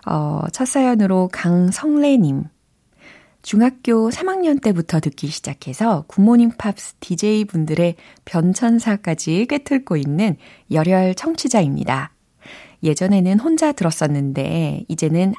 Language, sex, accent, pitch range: Korean, female, native, 155-210 Hz